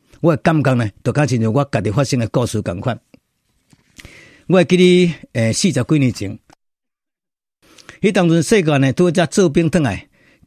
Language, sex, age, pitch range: Chinese, male, 50-69, 120-175 Hz